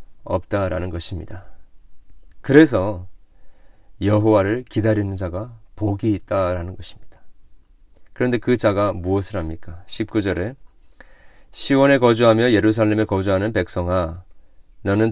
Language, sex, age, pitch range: Korean, male, 40-59, 90-115 Hz